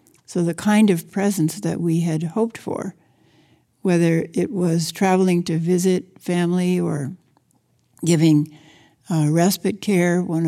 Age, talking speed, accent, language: 60-79, 130 wpm, American, English